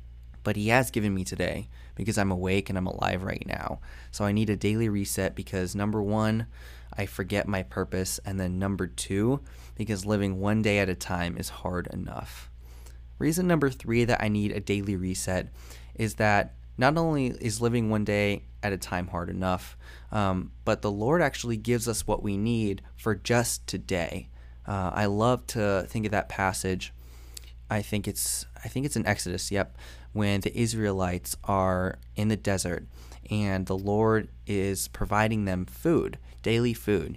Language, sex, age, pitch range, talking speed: English, male, 20-39, 85-105 Hz, 175 wpm